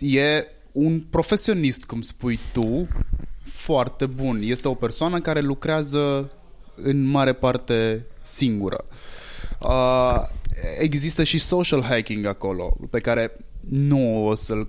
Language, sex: Romanian, male